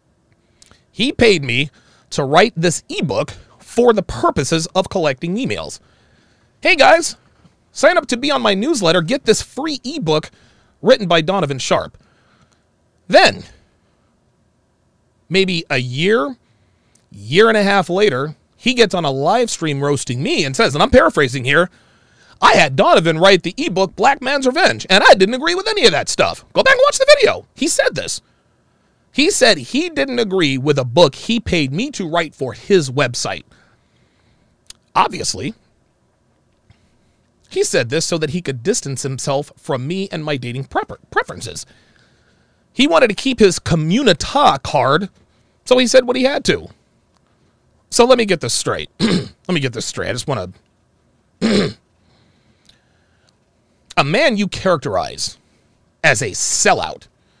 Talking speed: 155 wpm